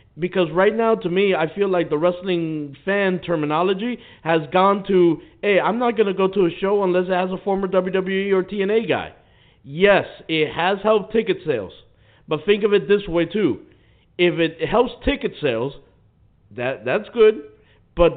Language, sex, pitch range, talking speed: English, male, 160-210 Hz, 180 wpm